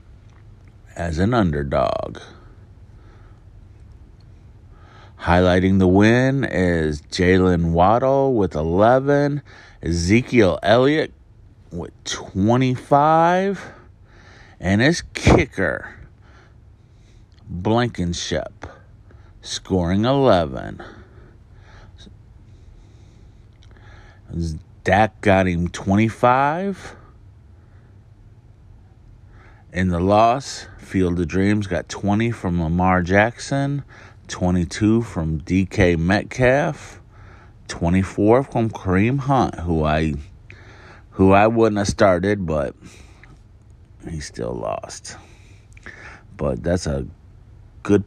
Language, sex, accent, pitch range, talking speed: English, male, American, 95-110 Hz, 75 wpm